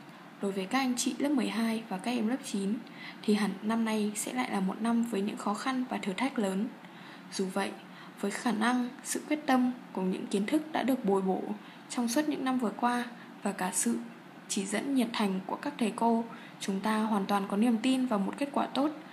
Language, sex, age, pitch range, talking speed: Vietnamese, female, 10-29, 210-260 Hz, 230 wpm